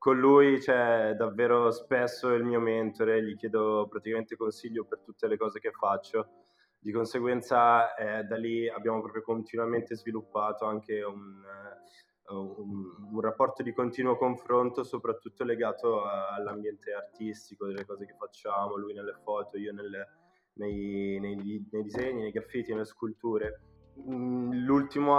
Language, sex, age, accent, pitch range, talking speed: Italian, male, 20-39, native, 105-125 Hz, 130 wpm